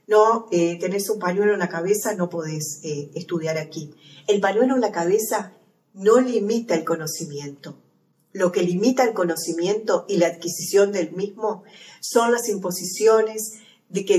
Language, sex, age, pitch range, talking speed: Spanish, female, 40-59, 170-215 Hz, 155 wpm